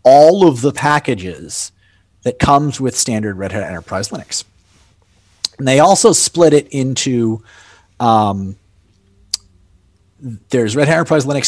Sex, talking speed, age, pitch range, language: male, 125 wpm, 30-49, 100-140 Hz, English